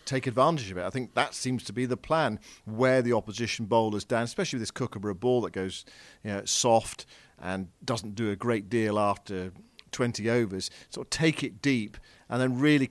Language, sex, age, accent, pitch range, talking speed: English, male, 50-69, British, 105-130 Hz, 205 wpm